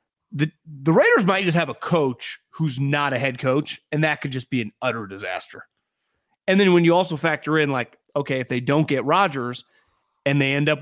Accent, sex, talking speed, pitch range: American, male, 215 wpm, 120-155 Hz